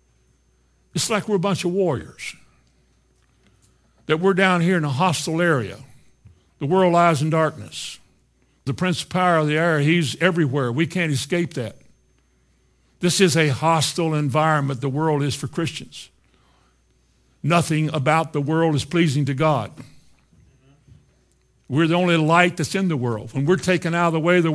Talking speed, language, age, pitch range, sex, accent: 165 wpm, English, 60-79, 125-165 Hz, male, American